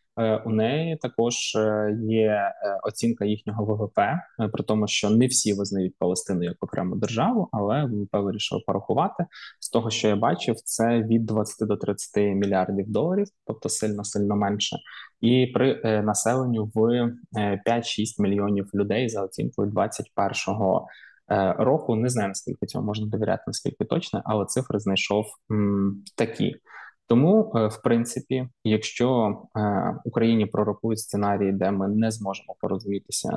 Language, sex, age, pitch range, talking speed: Ukrainian, male, 20-39, 100-115 Hz, 130 wpm